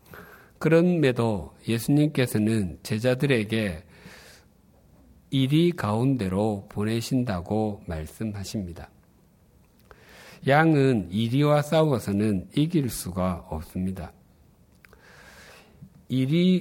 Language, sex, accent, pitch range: Korean, male, native, 105-140 Hz